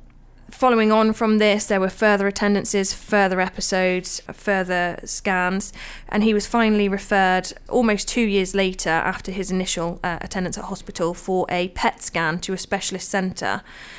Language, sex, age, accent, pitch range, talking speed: English, female, 20-39, British, 185-210 Hz, 155 wpm